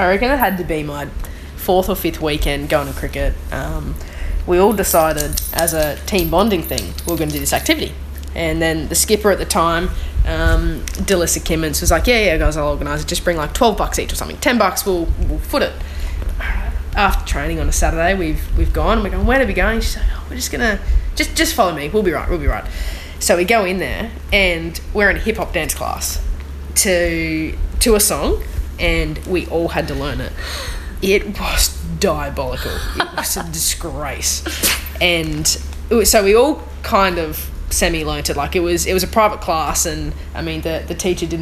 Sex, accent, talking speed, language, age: female, Australian, 220 wpm, English, 10-29